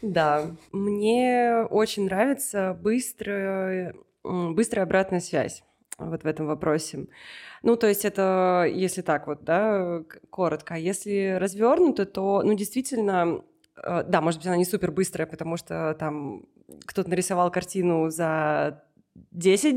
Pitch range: 170-210 Hz